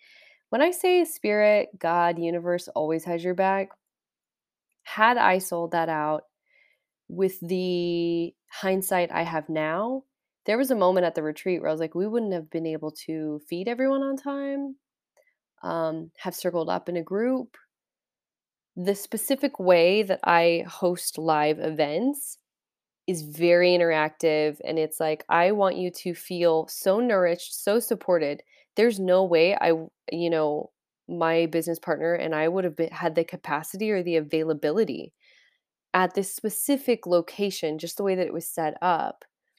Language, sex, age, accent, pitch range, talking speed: English, female, 20-39, American, 165-210 Hz, 155 wpm